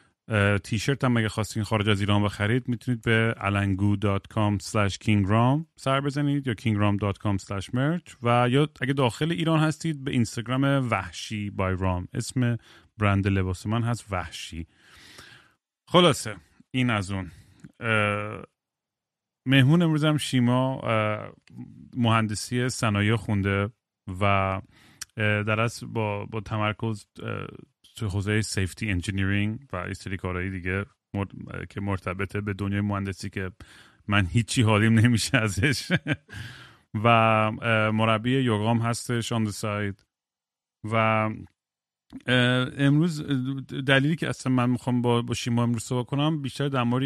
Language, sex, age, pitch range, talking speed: Persian, male, 30-49, 100-125 Hz, 115 wpm